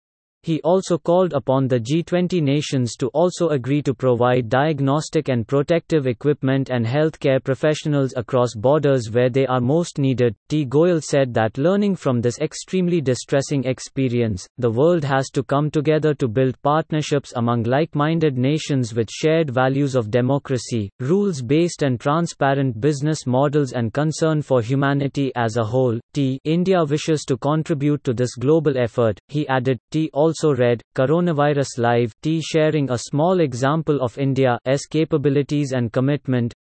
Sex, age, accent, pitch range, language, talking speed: male, 30-49, Indian, 130-155 Hz, English, 150 wpm